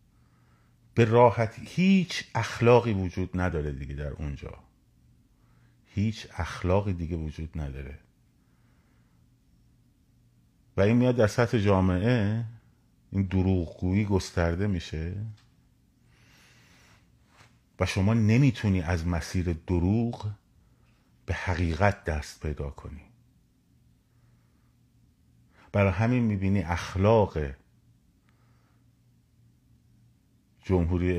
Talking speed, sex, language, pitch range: 75 wpm, male, Persian, 85-110 Hz